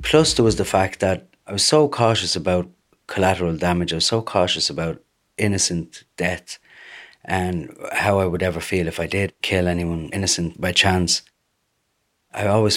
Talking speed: 170 wpm